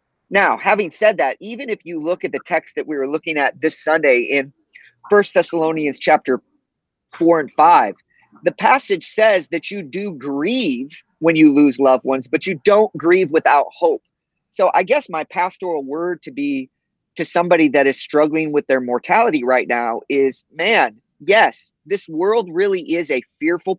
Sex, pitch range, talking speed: male, 145-215 Hz, 175 wpm